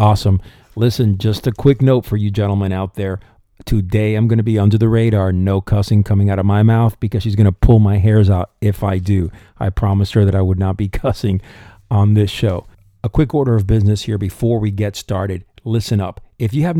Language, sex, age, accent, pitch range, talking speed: English, male, 50-69, American, 100-120 Hz, 230 wpm